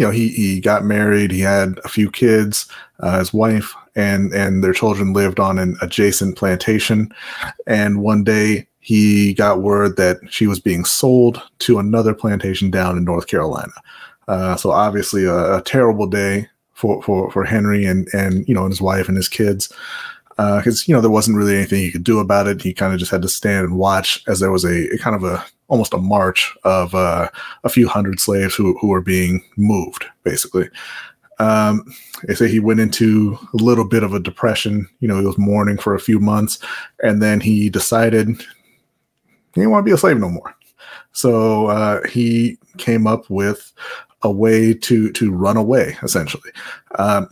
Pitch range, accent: 95-110 Hz, American